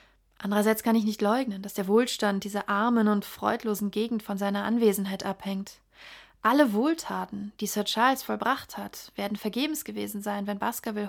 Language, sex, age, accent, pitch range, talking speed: German, female, 30-49, German, 200-225 Hz, 160 wpm